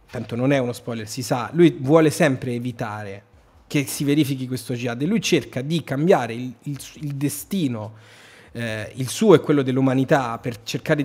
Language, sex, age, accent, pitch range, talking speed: Italian, male, 30-49, native, 125-165 Hz, 180 wpm